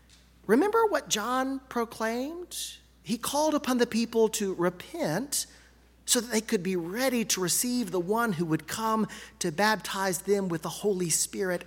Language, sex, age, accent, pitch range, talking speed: English, male, 40-59, American, 170-235 Hz, 160 wpm